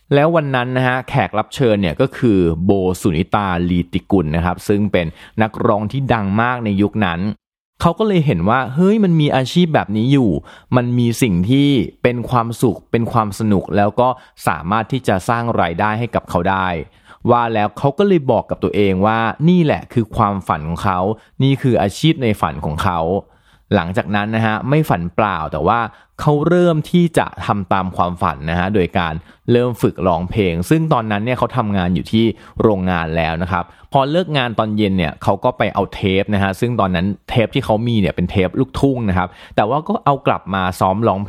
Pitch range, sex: 95-125 Hz, male